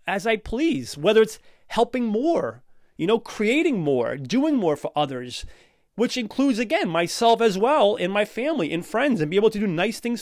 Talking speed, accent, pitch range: 195 wpm, American, 170-225 Hz